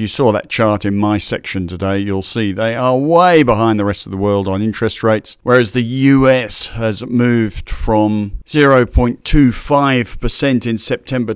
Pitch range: 105-125 Hz